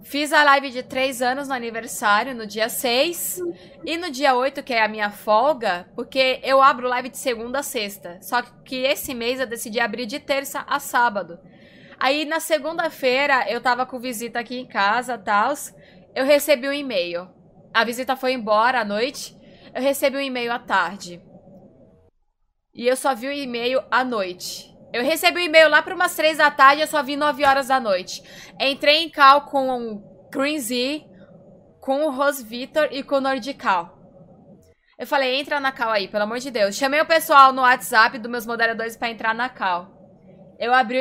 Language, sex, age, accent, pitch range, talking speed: Portuguese, female, 20-39, Brazilian, 220-280 Hz, 190 wpm